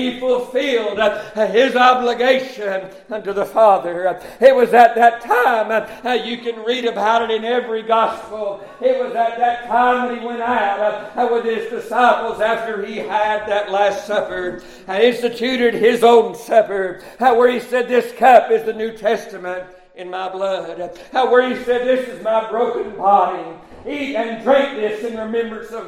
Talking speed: 175 wpm